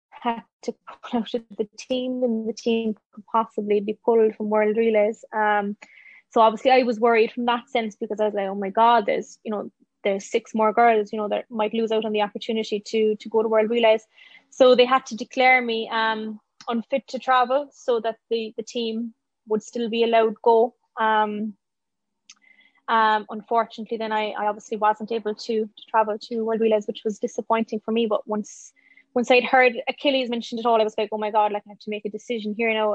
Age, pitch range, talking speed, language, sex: 20-39, 215-235 Hz, 215 wpm, English, female